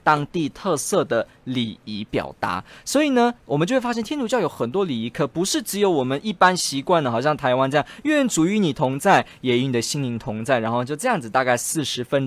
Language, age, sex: Chinese, 20-39, male